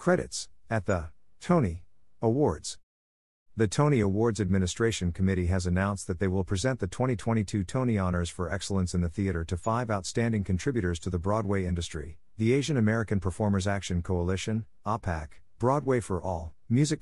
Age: 50-69